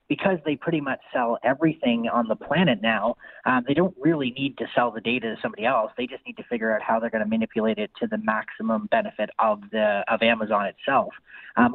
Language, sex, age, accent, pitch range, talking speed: English, male, 30-49, American, 115-170 Hz, 235 wpm